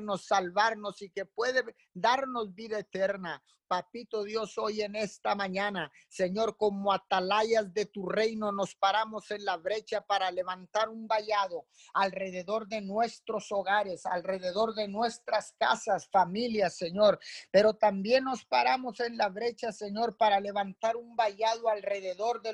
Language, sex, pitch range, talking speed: Spanish, male, 195-225 Hz, 140 wpm